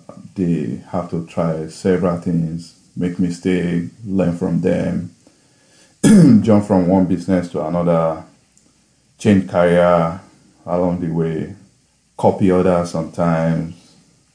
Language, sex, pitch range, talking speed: English, male, 85-95 Hz, 105 wpm